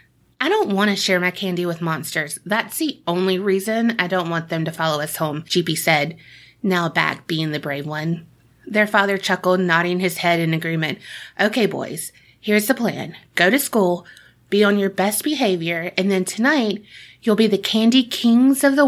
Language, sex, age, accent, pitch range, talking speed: English, female, 30-49, American, 170-215 Hz, 190 wpm